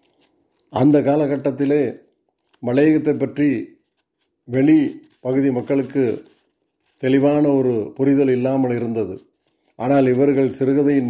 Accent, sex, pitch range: native, male, 125-145 Hz